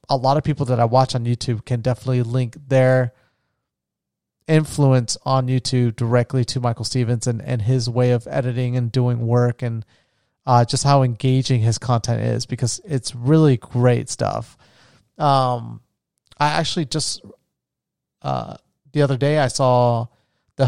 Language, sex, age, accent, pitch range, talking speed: English, male, 30-49, American, 120-135 Hz, 155 wpm